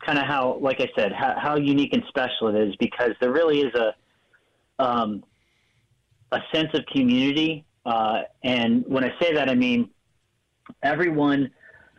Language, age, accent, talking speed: English, 40-59, American, 160 wpm